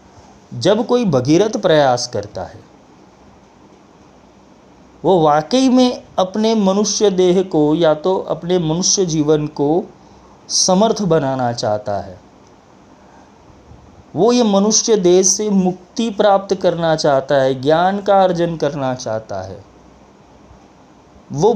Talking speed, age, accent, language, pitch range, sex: 110 wpm, 30-49, native, Hindi, 130-195 Hz, male